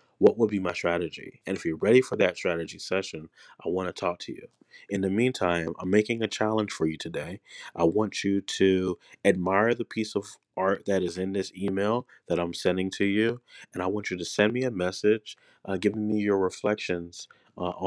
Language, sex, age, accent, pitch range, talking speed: English, male, 30-49, American, 85-105 Hz, 210 wpm